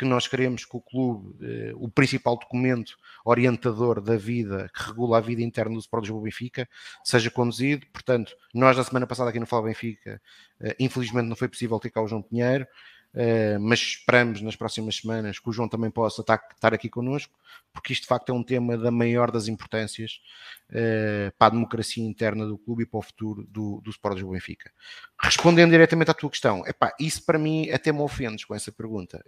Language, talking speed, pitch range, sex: Portuguese, 205 wpm, 110-135 Hz, male